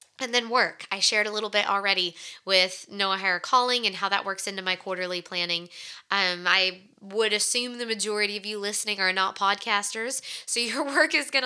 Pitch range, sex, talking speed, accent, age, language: 190-230 Hz, female, 200 wpm, American, 20-39, English